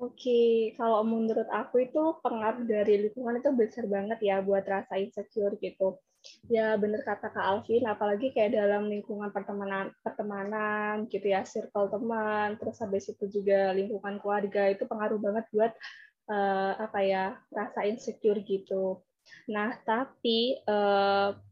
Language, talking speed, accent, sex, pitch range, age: Indonesian, 140 wpm, native, female, 210-245 Hz, 20-39